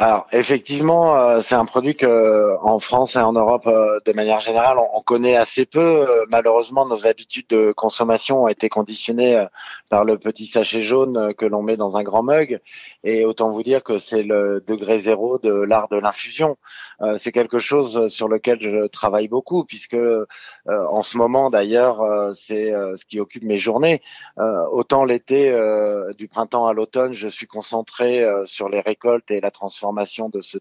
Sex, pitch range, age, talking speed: male, 105-120 Hz, 20-39, 170 wpm